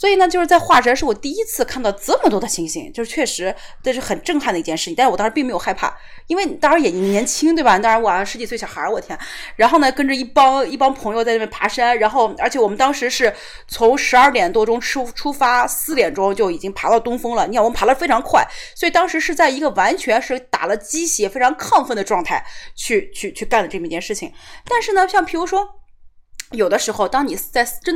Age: 30-49